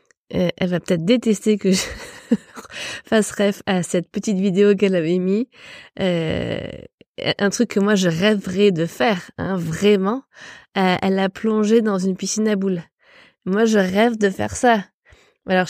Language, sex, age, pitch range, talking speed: French, female, 20-39, 190-225 Hz, 160 wpm